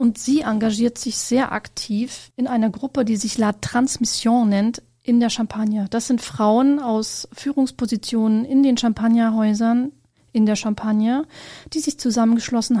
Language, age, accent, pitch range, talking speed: German, 40-59, German, 210-250 Hz, 145 wpm